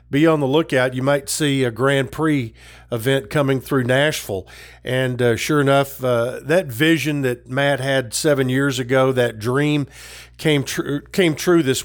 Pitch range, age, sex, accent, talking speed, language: 125-160 Hz, 50-69, male, American, 170 wpm, English